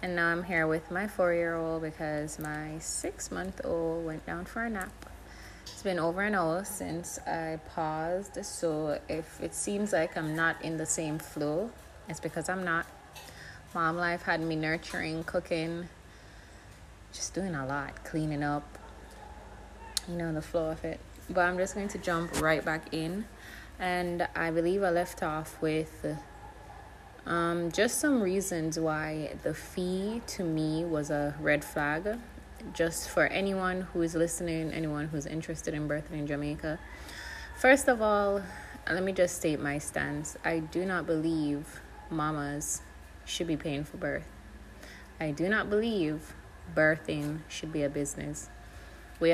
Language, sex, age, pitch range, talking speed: English, female, 20-39, 150-175 Hz, 155 wpm